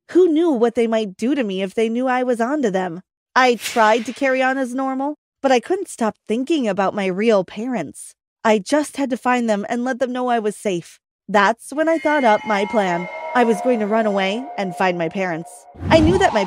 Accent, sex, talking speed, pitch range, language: American, female, 240 wpm, 195-255 Hz, English